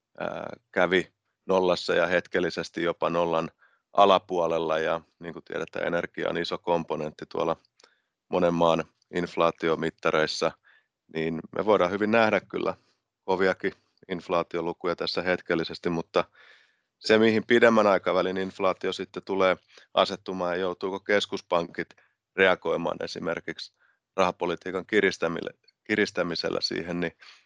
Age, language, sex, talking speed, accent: 30-49, Finnish, male, 105 wpm, native